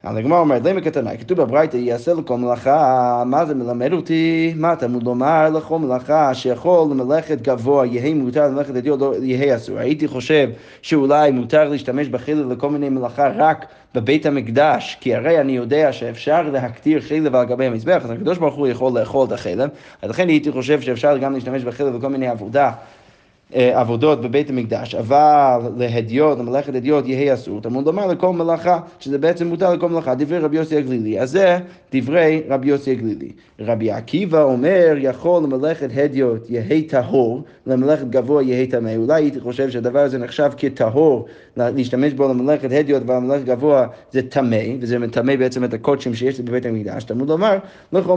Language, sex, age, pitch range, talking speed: Hebrew, male, 20-39, 125-155 Hz, 165 wpm